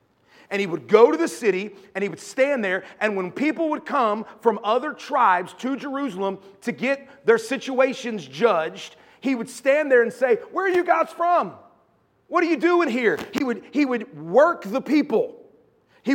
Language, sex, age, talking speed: English, male, 40-59, 185 wpm